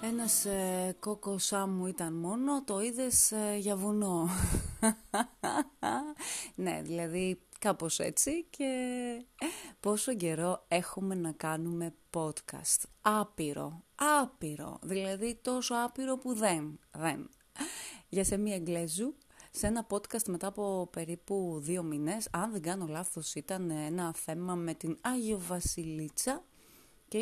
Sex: female